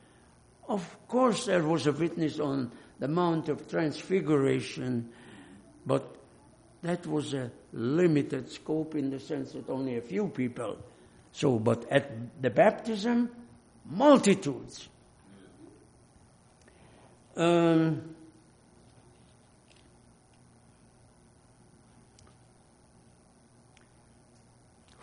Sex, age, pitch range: male, 60-79, 130-205 Hz